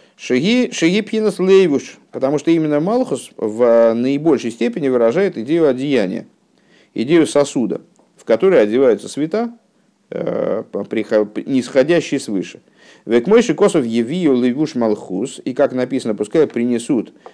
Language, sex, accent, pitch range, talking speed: Russian, male, native, 105-150 Hz, 100 wpm